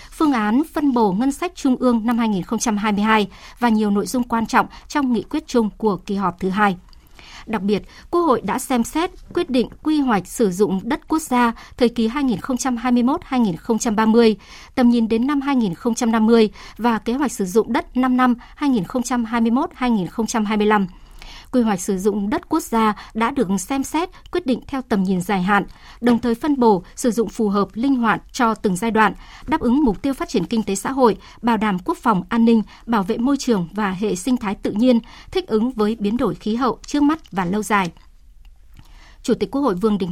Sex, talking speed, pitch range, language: male, 200 wpm, 210-260 Hz, Vietnamese